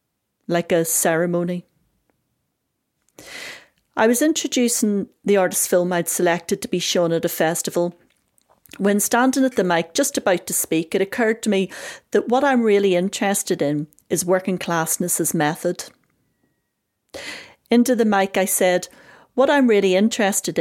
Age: 40-59